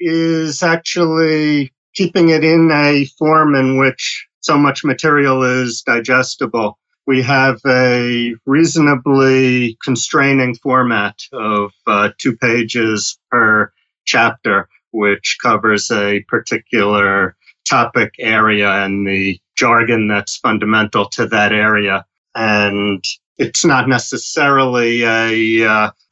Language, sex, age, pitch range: English, male, 40-59, 115-140 Hz